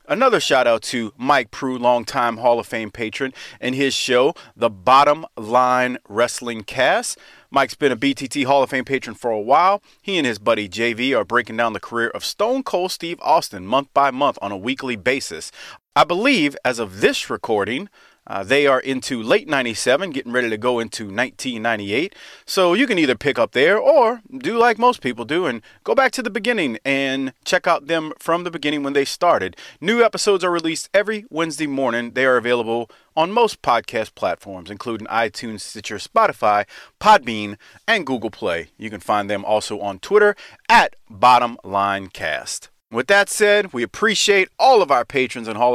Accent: American